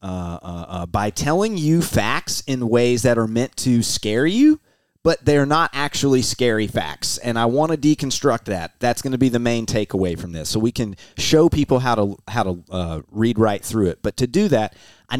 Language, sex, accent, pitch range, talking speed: English, male, American, 100-130 Hz, 215 wpm